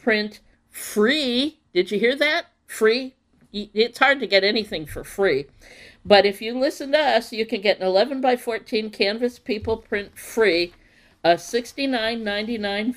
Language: English